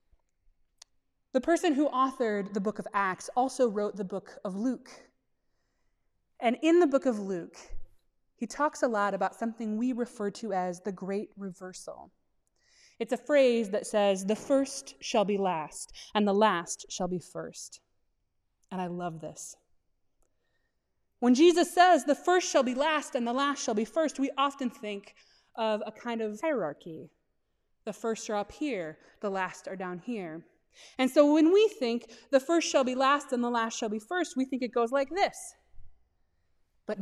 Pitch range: 210-280 Hz